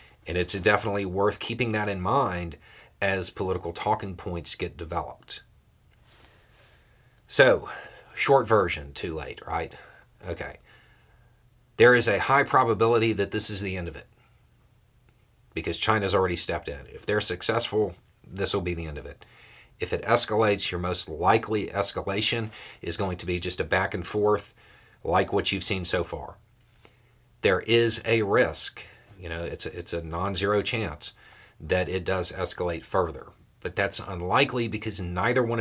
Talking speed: 155 wpm